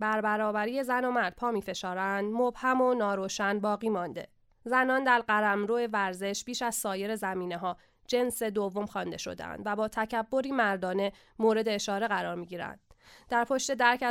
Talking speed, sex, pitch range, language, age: 155 wpm, female, 195-230 Hz, Persian, 20-39